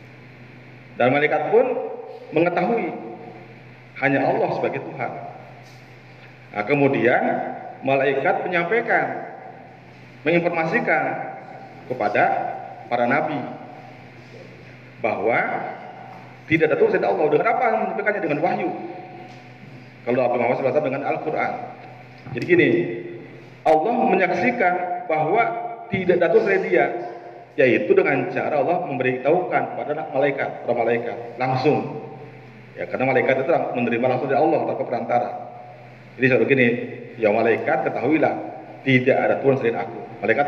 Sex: male